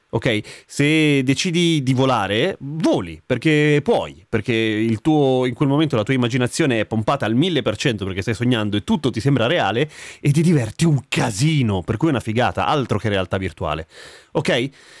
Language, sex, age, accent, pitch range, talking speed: Italian, male, 30-49, native, 115-160 Hz, 175 wpm